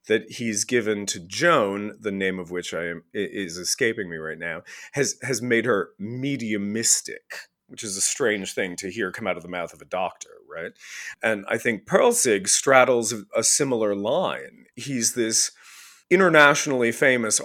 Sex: male